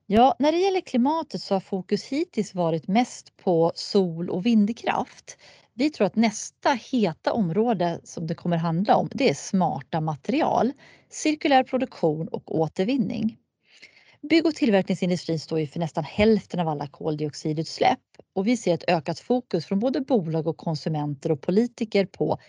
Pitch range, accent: 170-225 Hz, native